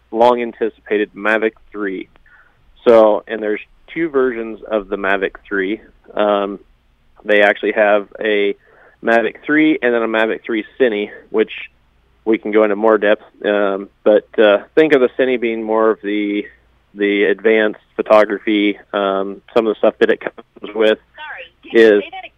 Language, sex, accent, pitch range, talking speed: English, male, American, 105-120 Hz, 155 wpm